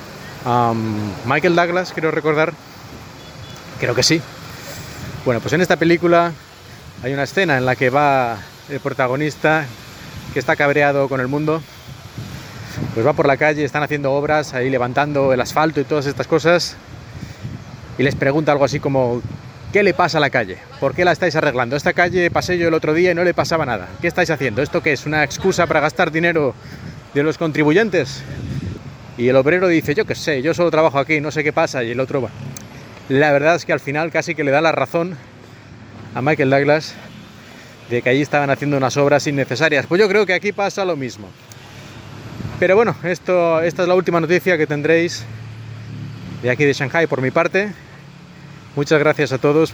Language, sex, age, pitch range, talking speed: Spanish, male, 30-49, 125-160 Hz, 190 wpm